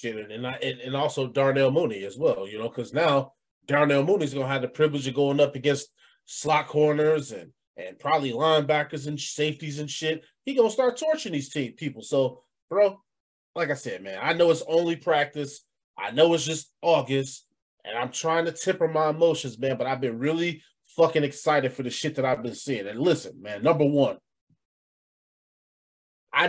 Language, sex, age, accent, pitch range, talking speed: English, male, 30-49, American, 135-180 Hz, 195 wpm